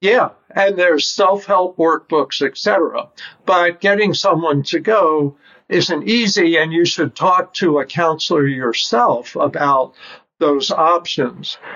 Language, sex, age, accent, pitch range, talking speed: English, male, 60-79, American, 150-190 Hz, 125 wpm